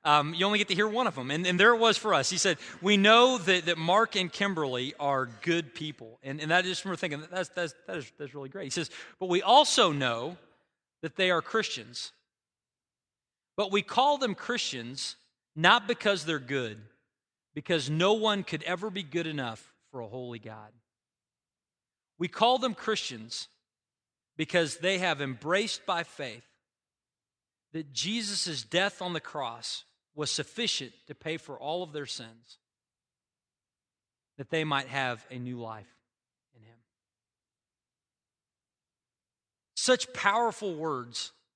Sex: male